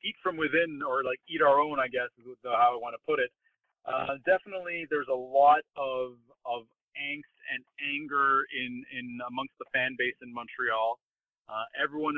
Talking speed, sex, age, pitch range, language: 180 wpm, male, 30-49, 120-150 Hz, English